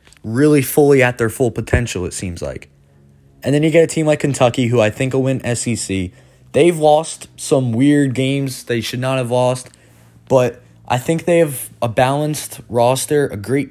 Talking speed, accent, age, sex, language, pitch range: 190 wpm, American, 20-39, male, English, 110-135 Hz